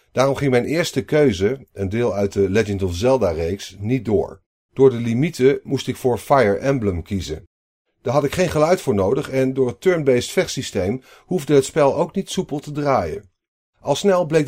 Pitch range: 100-135 Hz